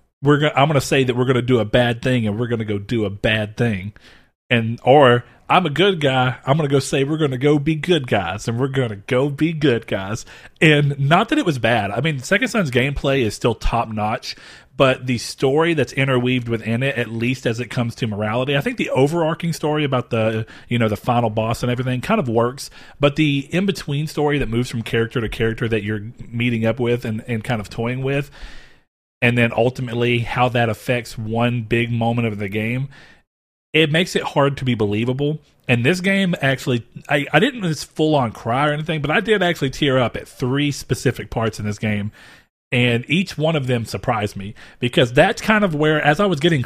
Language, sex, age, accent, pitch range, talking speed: English, male, 40-59, American, 115-145 Hz, 225 wpm